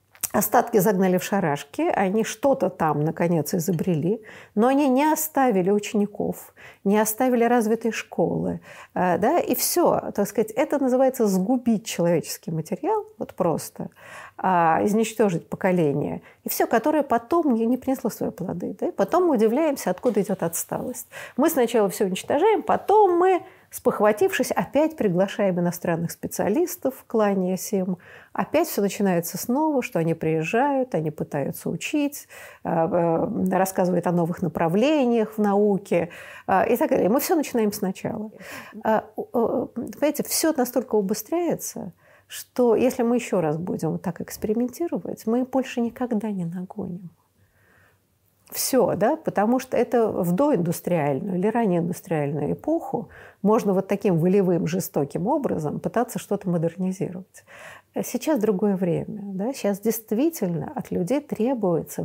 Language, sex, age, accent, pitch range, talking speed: Russian, female, 50-69, native, 185-250 Hz, 125 wpm